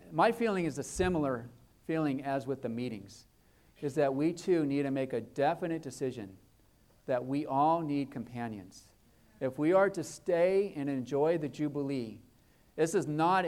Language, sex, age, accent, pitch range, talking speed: English, male, 40-59, American, 115-155 Hz, 165 wpm